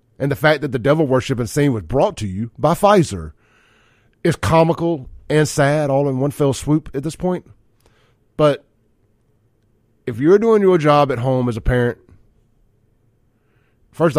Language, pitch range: English, 110-150 Hz